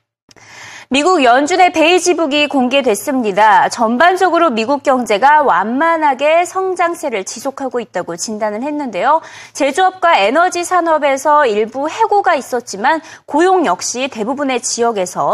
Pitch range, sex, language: 225-325 Hz, female, Korean